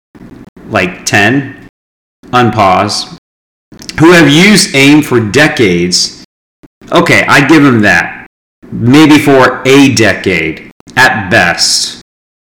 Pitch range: 110-140 Hz